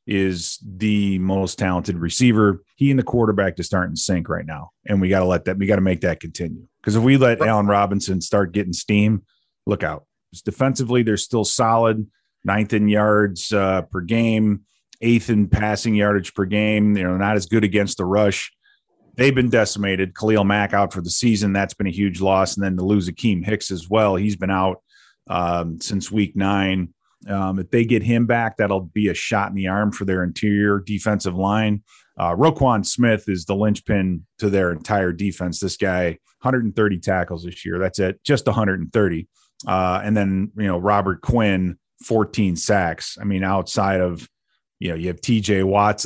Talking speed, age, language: 195 wpm, 30-49, English